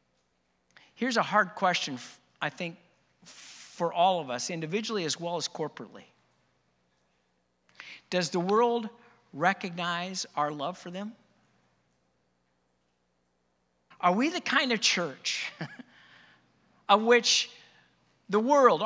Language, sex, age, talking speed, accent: English, male, 50-69, 105 wpm, American